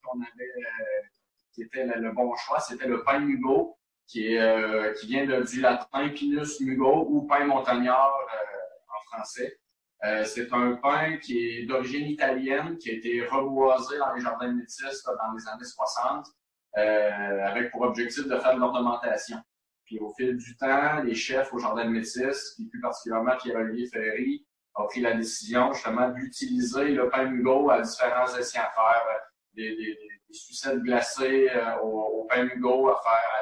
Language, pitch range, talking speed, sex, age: French, 115-135 Hz, 180 wpm, male, 30-49